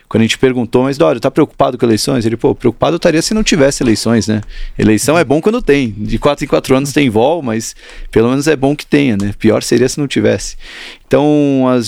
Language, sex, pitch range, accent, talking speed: Portuguese, male, 120-145 Hz, Brazilian, 230 wpm